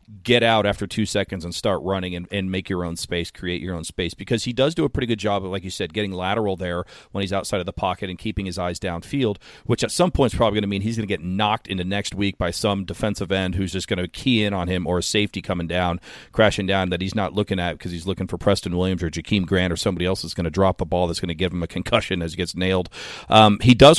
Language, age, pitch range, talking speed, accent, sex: English, 40-59, 90-115 Hz, 295 wpm, American, male